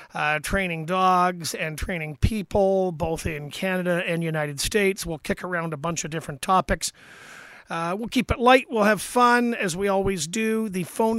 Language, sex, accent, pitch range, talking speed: English, male, American, 175-210 Hz, 180 wpm